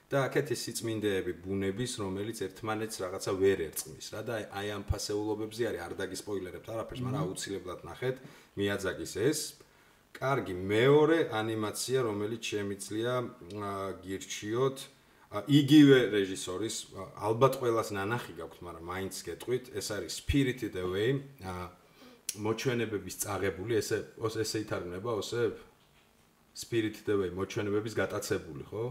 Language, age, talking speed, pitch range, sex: English, 30-49, 95 wpm, 95-125 Hz, male